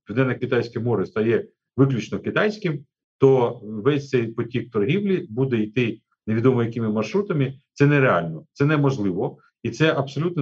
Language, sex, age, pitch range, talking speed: Ukrainian, male, 40-59, 115-150 Hz, 130 wpm